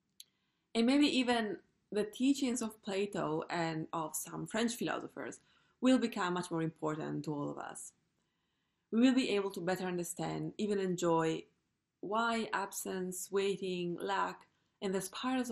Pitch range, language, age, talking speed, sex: 165-210 Hz, German, 20-39, 145 wpm, female